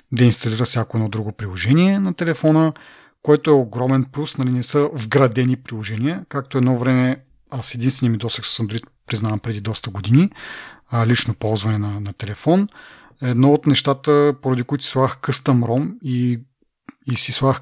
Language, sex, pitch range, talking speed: Bulgarian, male, 120-140 Hz, 165 wpm